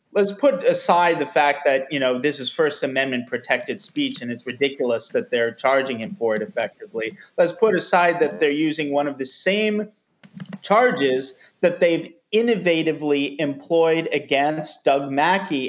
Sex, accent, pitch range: male, American, 135-175 Hz